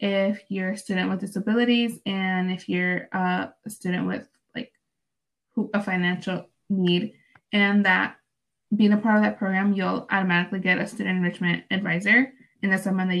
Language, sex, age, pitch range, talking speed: English, female, 20-39, 185-220 Hz, 165 wpm